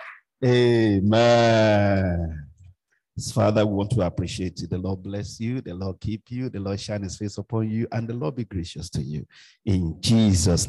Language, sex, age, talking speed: English, male, 50-69, 180 wpm